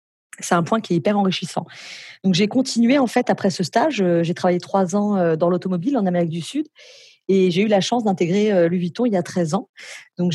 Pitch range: 175-205 Hz